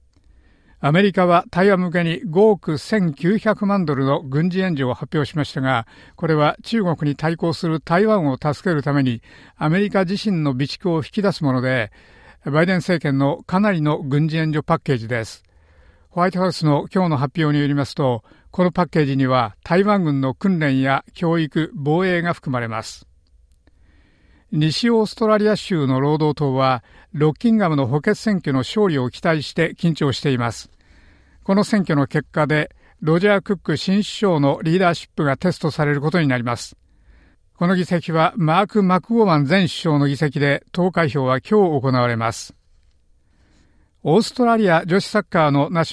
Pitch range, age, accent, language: 130-180 Hz, 60-79, native, Japanese